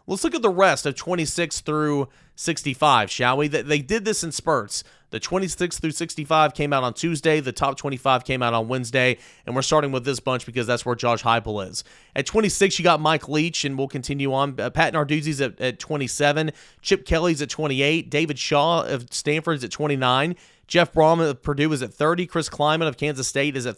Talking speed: 205 wpm